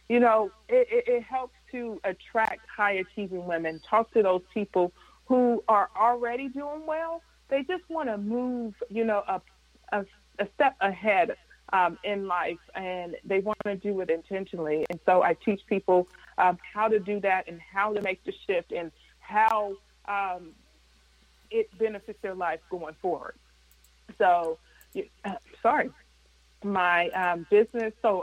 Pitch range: 180-225 Hz